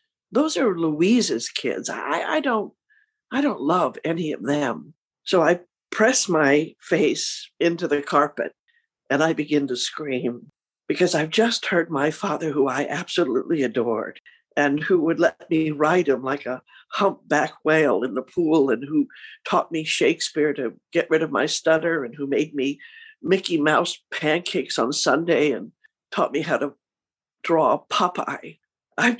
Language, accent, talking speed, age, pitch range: English, American, 160 wpm, 60-79, 150-200 Hz